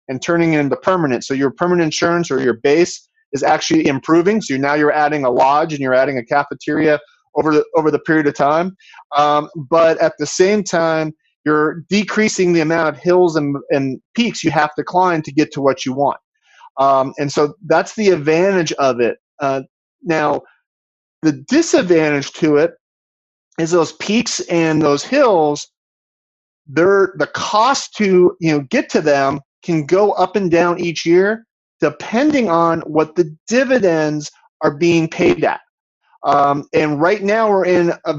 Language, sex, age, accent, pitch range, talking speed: English, male, 30-49, American, 145-180 Hz, 175 wpm